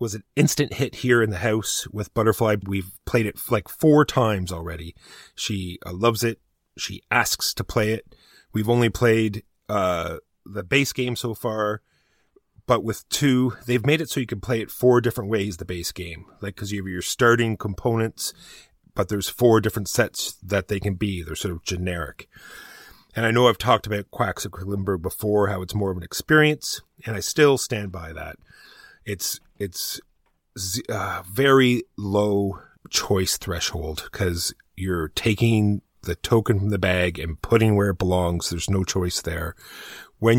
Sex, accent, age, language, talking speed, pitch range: male, American, 30-49, English, 175 wpm, 95-115 Hz